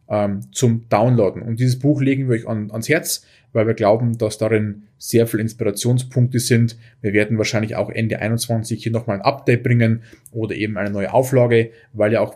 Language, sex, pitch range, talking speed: German, male, 110-125 Hz, 190 wpm